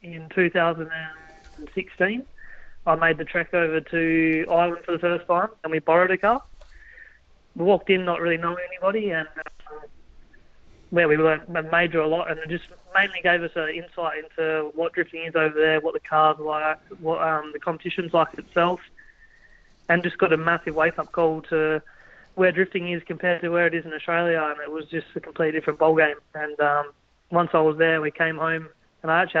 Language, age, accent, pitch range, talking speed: English, 20-39, Australian, 155-175 Hz, 195 wpm